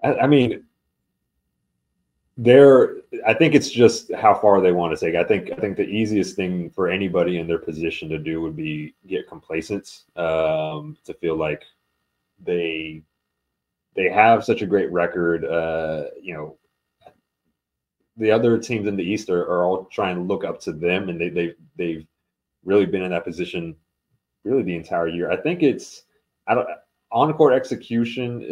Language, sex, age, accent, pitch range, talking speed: English, male, 30-49, American, 80-115 Hz, 170 wpm